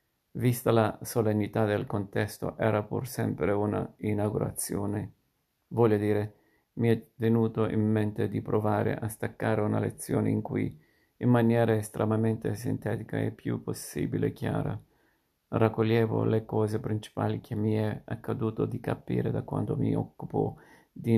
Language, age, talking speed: Italian, 50-69, 135 wpm